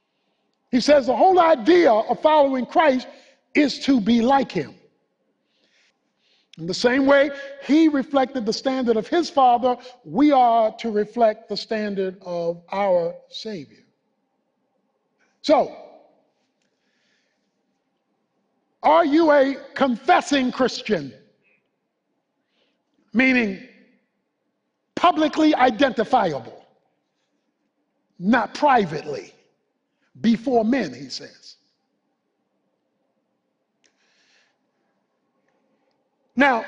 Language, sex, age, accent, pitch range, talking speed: English, male, 50-69, American, 225-275 Hz, 80 wpm